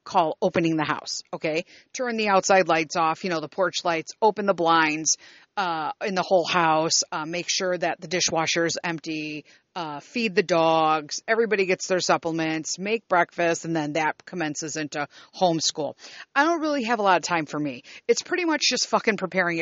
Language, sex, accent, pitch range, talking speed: English, female, American, 165-215 Hz, 195 wpm